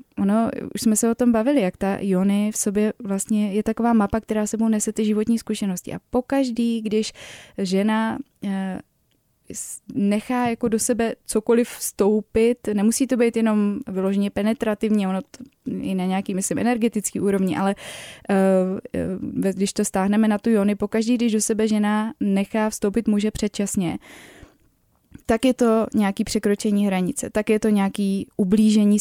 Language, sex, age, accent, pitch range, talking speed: Czech, female, 20-39, native, 200-225 Hz, 150 wpm